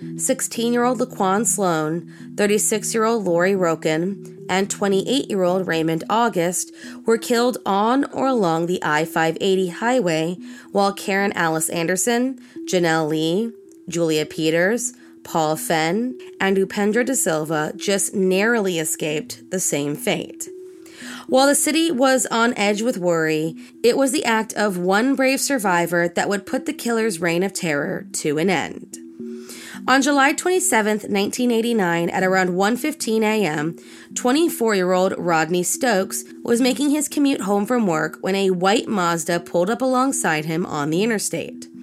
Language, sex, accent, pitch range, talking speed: English, female, American, 165-235 Hz, 135 wpm